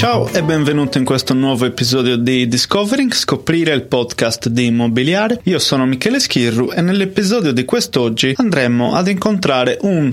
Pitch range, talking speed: 120-145 Hz, 155 wpm